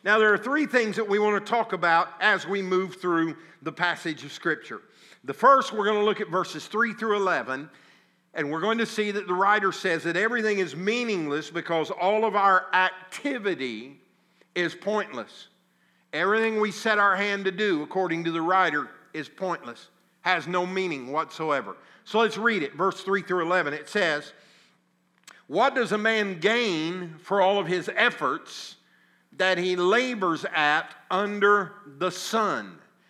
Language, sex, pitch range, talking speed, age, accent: English, male, 170-215 Hz, 170 wpm, 50-69, American